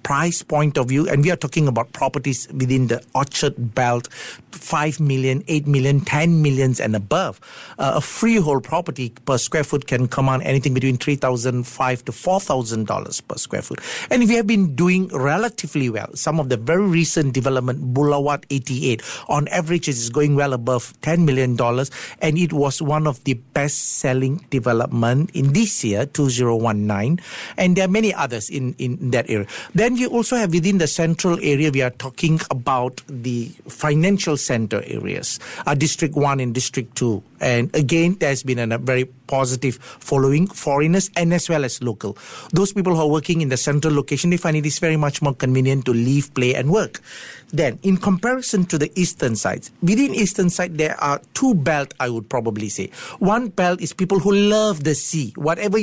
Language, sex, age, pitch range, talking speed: English, male, 50-69, 130-170 Hz, 185 wpm